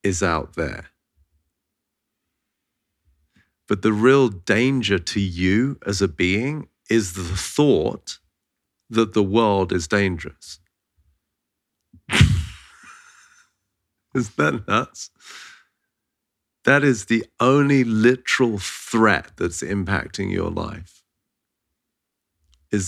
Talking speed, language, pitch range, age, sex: 90 wpm, English, 90-120 Hz, 40-59, male